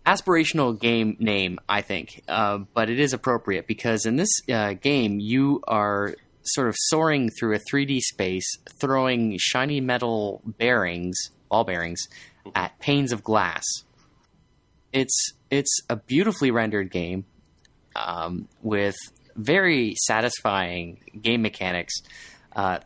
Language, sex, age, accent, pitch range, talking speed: English, male, 30-49, American, 100-125 Hz, 125 wpm